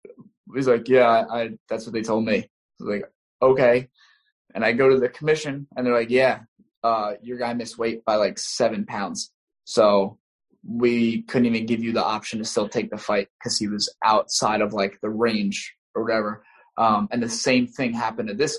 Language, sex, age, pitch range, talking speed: English, male, 10-29, 110-130 Hz, 200 wpm